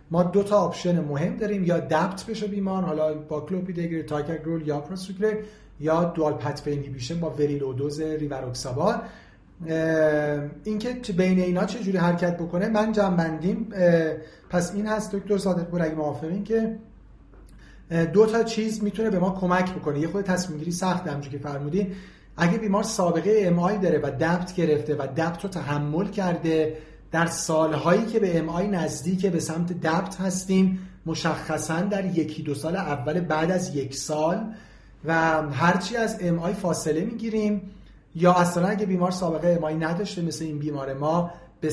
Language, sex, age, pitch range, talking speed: Persian, male, 40-59, 155-190 Hz, 160 wpm